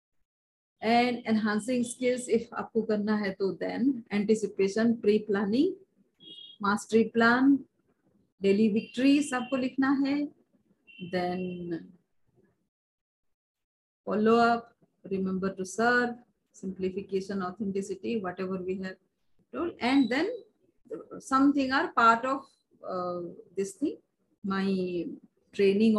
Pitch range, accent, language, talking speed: 200-255 Hz, Indian, English, 85 wpm